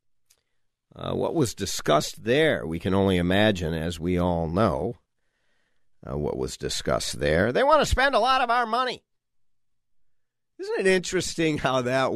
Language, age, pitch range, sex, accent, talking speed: English, 50-69, 120-175 Hz, male, American, 160 wpm